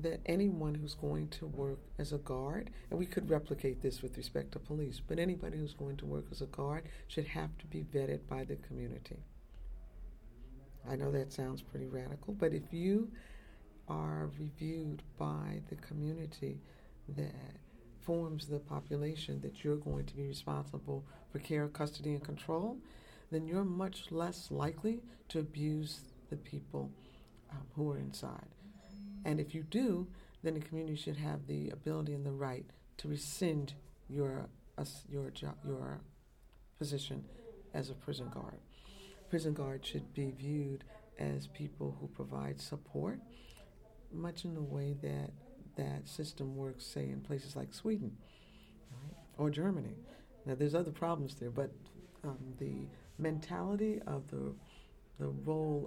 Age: 50-69